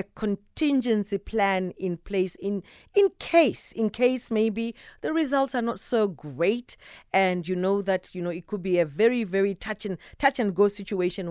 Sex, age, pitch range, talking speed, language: female, 40-59, 170-210 Hz, 185 wpm, English